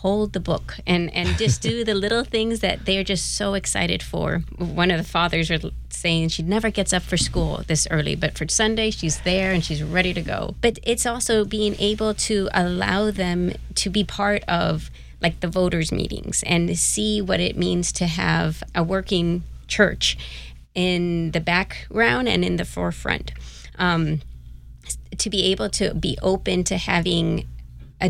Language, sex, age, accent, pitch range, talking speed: English, female, 30-49, American, 155-190 Hz, 180 wpm